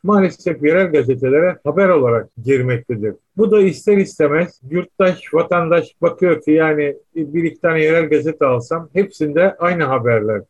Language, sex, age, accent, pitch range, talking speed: Turkish, male, 50-69, native, 135-170 Hz, 135 wpm